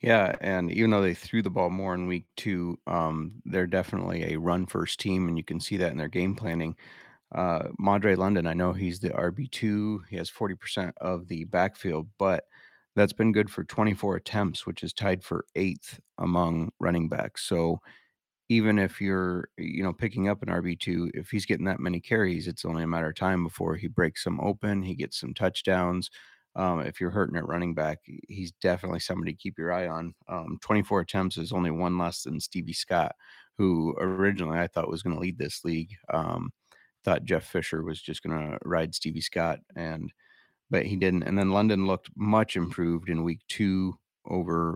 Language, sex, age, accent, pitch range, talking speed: English, male, 30-49, American, 85-95 Hz, 195 wpm